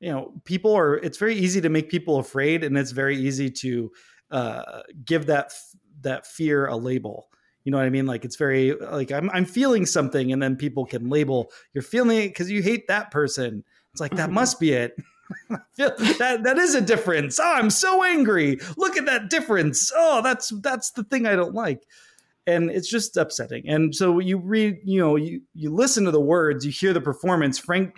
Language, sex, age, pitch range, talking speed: English, male, 30-49, 135-195 Hz, 210 wpm